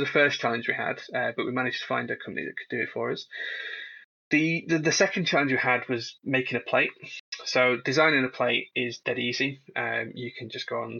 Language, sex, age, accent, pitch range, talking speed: English, male, 20-39, British, 120-130 Hz, 235 wpm